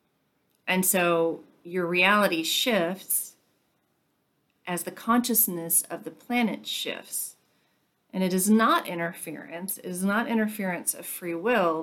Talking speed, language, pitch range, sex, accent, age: 120 wpm, English, 170-205 Hz, female, American, 40-59